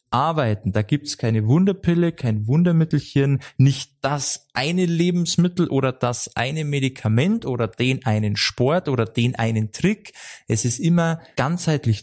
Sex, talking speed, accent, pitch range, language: male, 140 wpm, German, 115-150 Hz, German